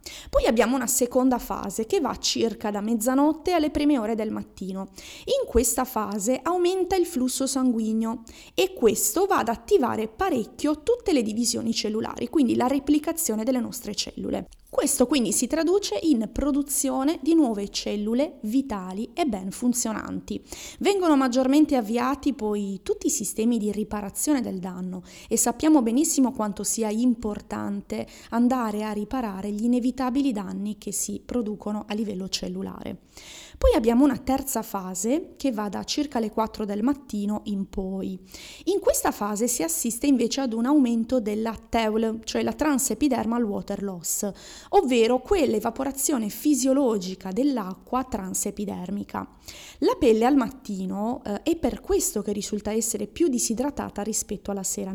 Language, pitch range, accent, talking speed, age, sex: Italian, 210-275 Hz, native, 145 wpm, 20-39, female